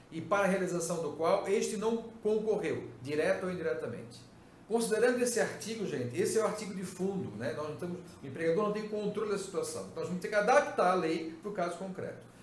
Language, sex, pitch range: Portuguese, male, 165-215 Hz